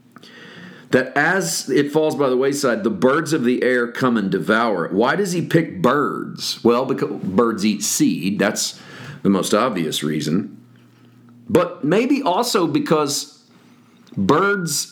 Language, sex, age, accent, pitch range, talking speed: English, male, 40-59, American, 130-200 Hz, 145 wpm